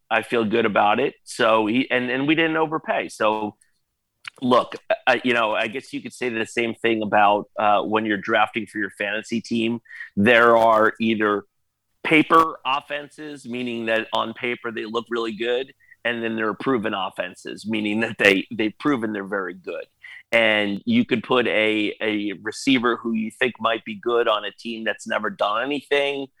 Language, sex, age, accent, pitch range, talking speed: English, male, 30-49, American, 110-125 Hz, 185 wpm